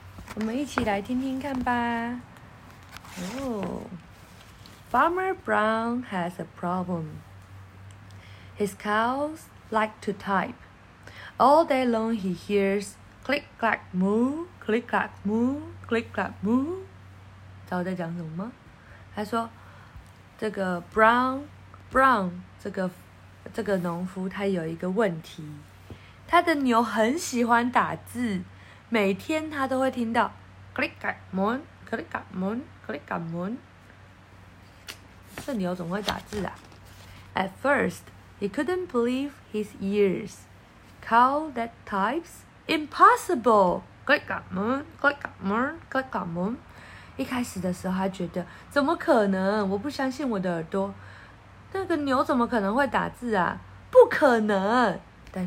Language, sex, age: Chinese, female, 20-39